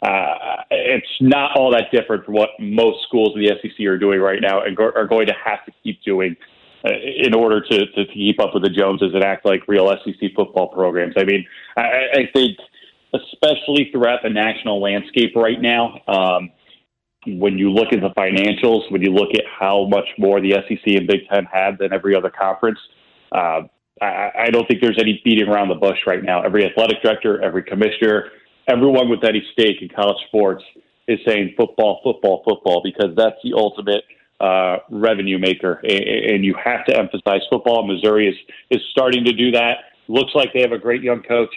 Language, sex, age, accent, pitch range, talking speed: English, male, 30-49, American, 100-115 Hz, 200 wpm